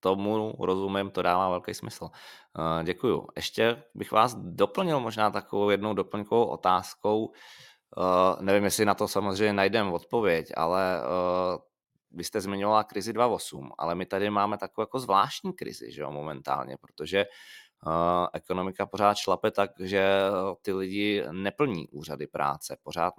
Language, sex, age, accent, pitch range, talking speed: Czech, male, 20-39, native, 90-105 Hz, 130 wpm